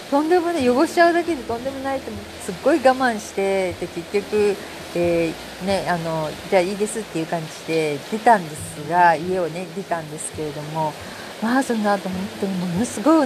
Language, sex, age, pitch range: Japanese, female, 40-59, 170-235 Hz